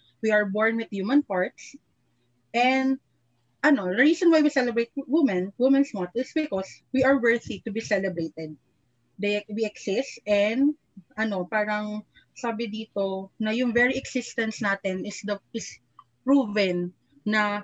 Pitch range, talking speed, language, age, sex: 190-250 Hz, 145 wpm, Filipino, 30-49, female